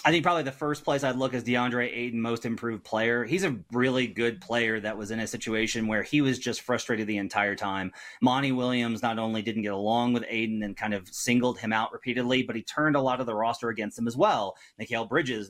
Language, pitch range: English, 110-130 Hz